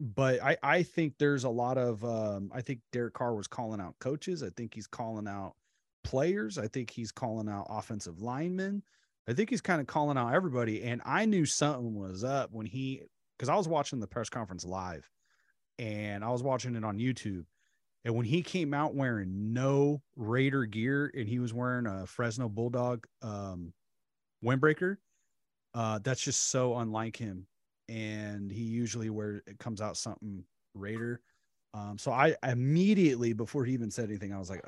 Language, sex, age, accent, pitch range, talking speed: English, male, 30-49, American, 105-130 Hz, 185 wpm